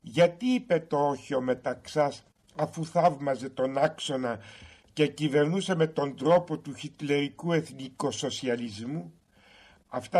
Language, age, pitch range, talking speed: Greek, 60-79, 130-170 Hz, 105 wpm